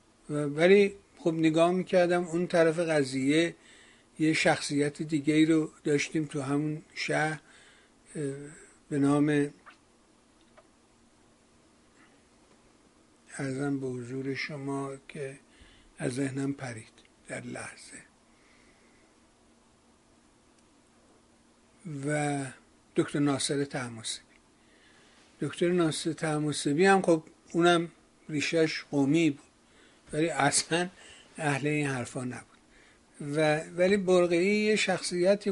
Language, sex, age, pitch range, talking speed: Persian, male, 60-79, 140-165 Hz, 85 wpm